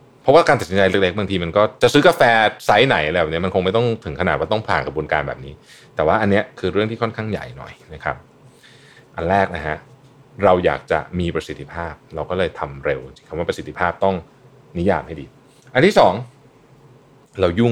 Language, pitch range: Thai, 90-135 Hz